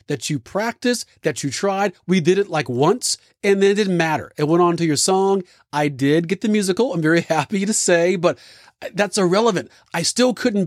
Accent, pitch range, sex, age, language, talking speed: American, 155-195 Hz, male, 40-59, English, 215 wpm